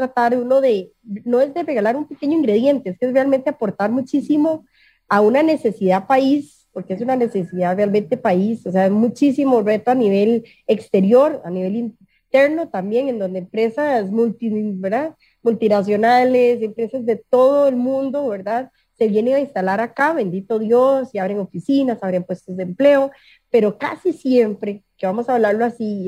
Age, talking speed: 30-49, 160 wpm